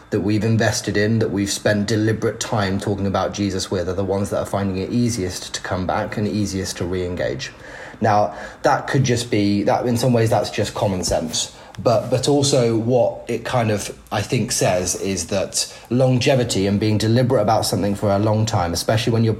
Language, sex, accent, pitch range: English, male, British, 100-125 Hz